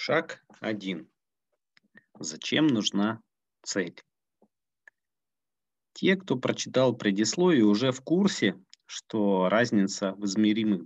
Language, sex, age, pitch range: Russian, male, 40-59, 100-135 Hz